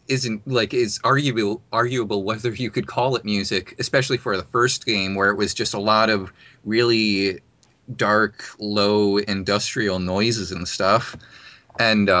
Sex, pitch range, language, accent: male, 95-120 Hz, English, American